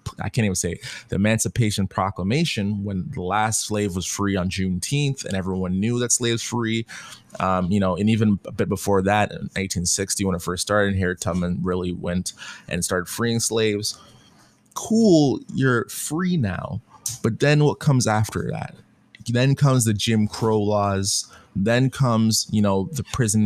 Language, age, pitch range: English, 20-39, 95-115 Hz